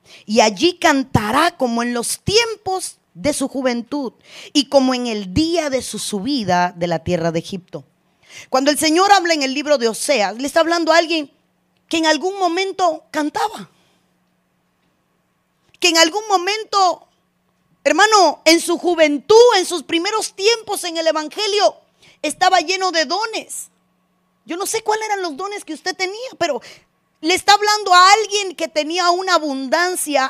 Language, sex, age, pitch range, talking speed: Spanish, female, 30-49, 245-360 Hz, 160 wpm